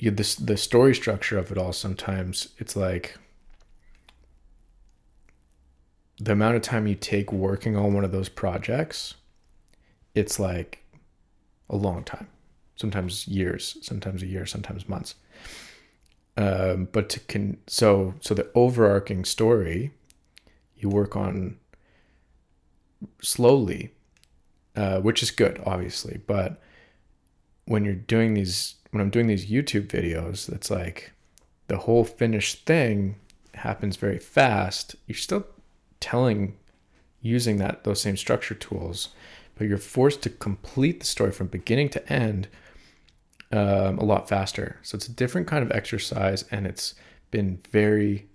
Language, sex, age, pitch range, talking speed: English, male, 20-39, 90-105 Hz, 135 wpm